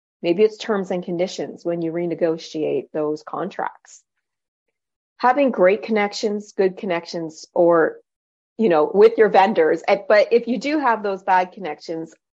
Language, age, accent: English, 40-59, American